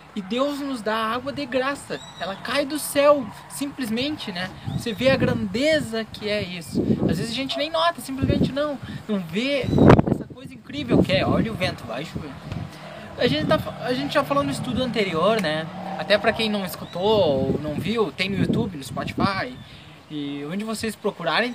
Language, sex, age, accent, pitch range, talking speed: Portuguese, male, 20-39, Brazilian, 210-275 Hz, 185 wpm